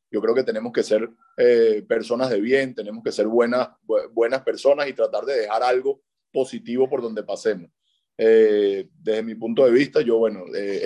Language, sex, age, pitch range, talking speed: Spanish, male, 20-39, 115-155 Hz, 195 wpm